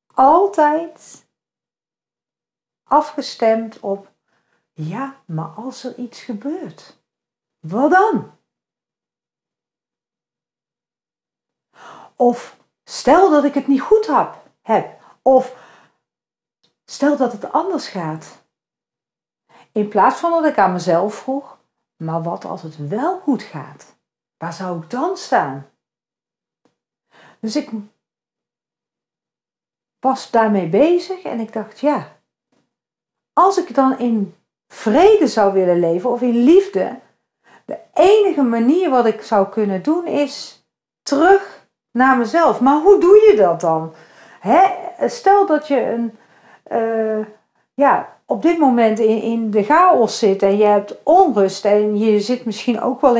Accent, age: Dutch, 50-69